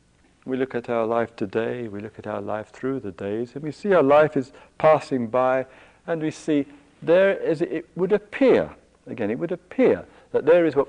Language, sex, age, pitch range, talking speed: English, male, 60-79, 115-180 Hz, 210 wpm